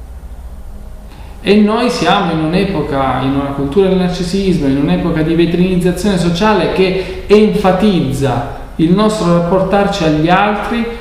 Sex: male